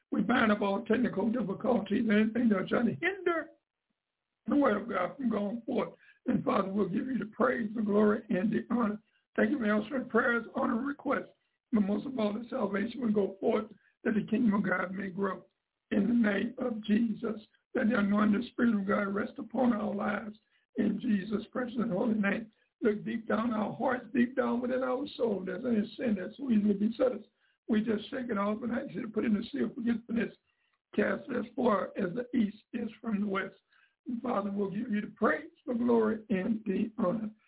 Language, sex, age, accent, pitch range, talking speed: English, male, 60-79, American, 205-240 Hz, 205 wpm